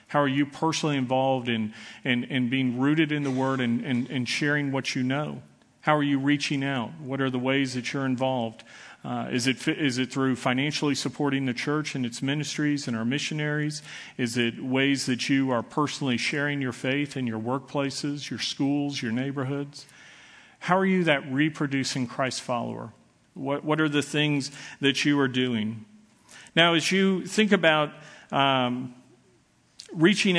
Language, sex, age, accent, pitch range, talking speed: English, male, 40-59, American, 130-150 Hz, 165 wpm